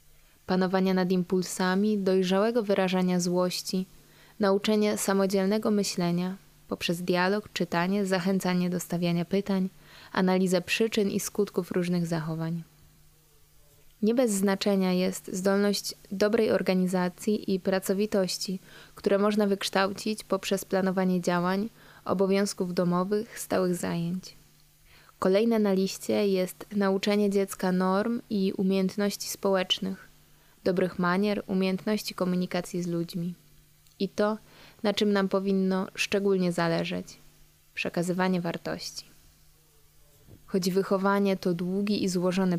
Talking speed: 105 wpm